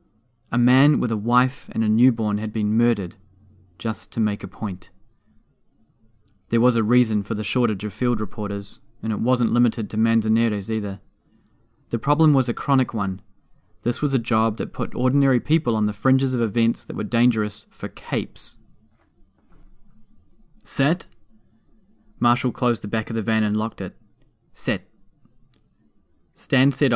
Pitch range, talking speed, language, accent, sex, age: 110-130 Hz, 160 wpm, English, Australian, male, 20-39